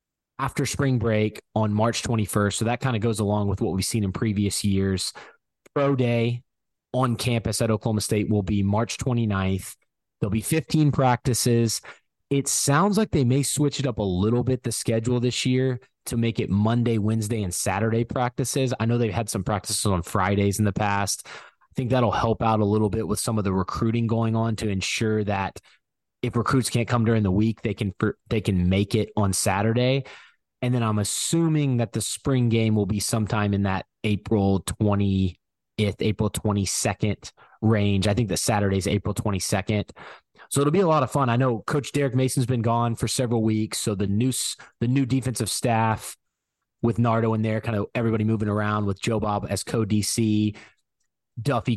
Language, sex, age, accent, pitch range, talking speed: English, male, 20-39, American, 105-120 Hz, 190 wpm